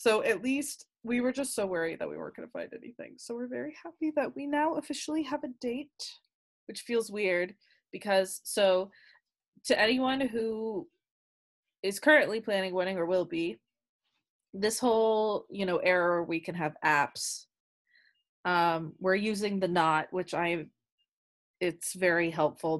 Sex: female